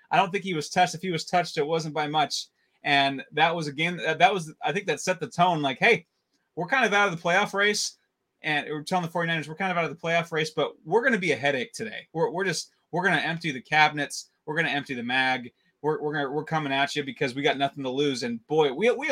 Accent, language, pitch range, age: American, English, 140-170 Hz, 20-39